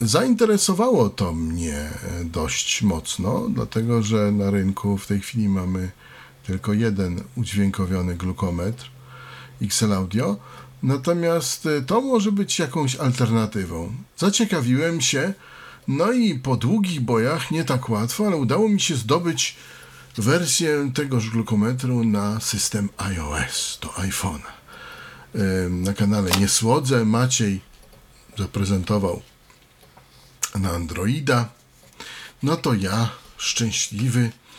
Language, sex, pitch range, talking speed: Polish, male, 100-135 Hz, 100 wpm